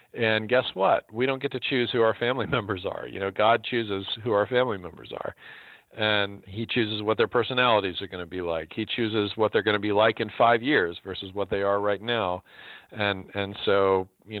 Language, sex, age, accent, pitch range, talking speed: English, male, 40-59, American, 95-110 Hz, 225 wpm